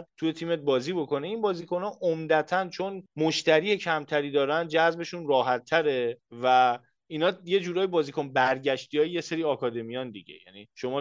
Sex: male